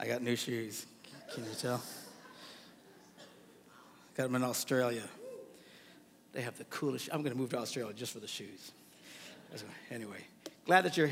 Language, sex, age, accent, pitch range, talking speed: English, male, 60-79, American, 115-155 Hz, 160 wpm